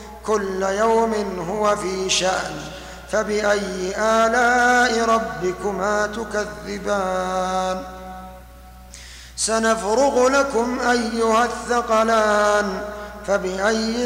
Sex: male